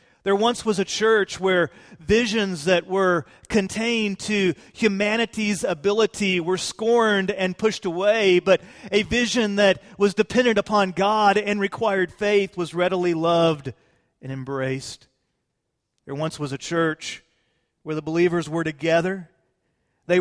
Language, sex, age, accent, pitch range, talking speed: English, male, 40-59, American, 155-200 Hz, 135 wpm